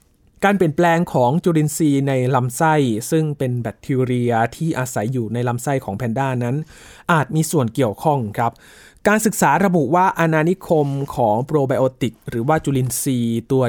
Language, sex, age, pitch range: Thai, male, 20-39, 120-160 Hz